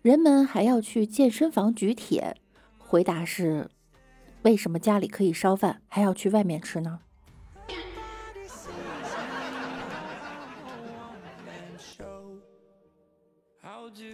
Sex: female